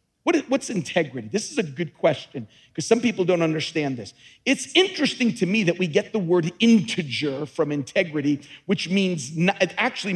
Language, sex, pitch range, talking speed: English, male, 180-245 Hz, 175 wpm